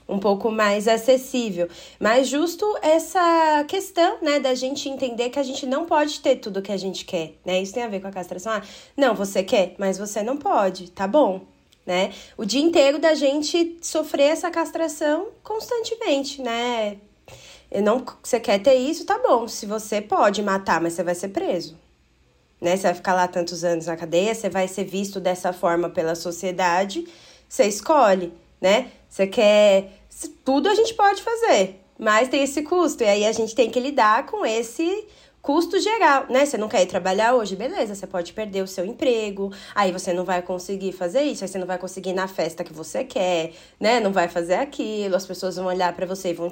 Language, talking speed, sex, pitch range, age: Portuguese, 205 wpm, female, 190-290 Hz, 20-39